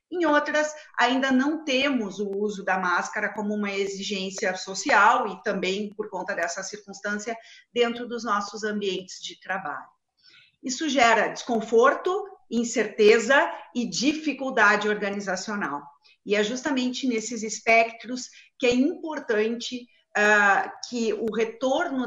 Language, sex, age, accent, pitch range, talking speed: Portuguese, female, 40-59, Brazilian, 200-245 Hz, 115 wpm